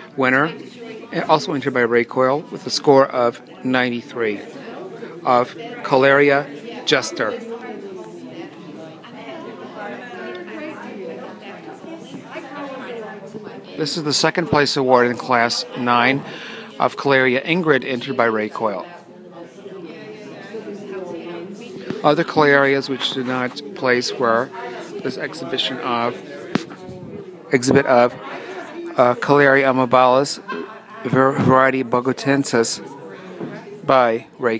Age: 40-59